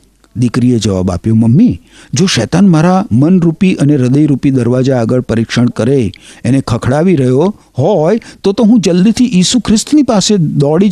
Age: 50-69